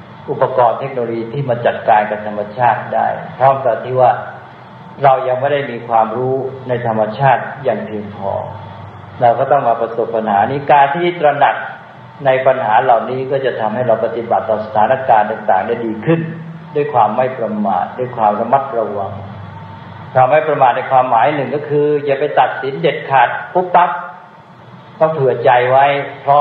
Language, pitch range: English, 115-145 Hz